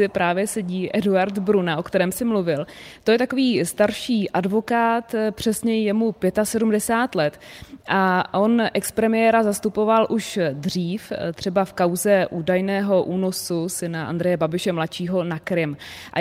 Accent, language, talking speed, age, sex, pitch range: native, Czech, 135 wpm, 20-39, female, 180-215 Hz